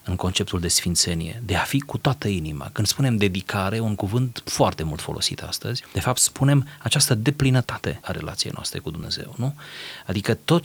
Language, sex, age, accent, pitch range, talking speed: Romanian, male, 30-49, native, 95-135 Hz, 180 wpm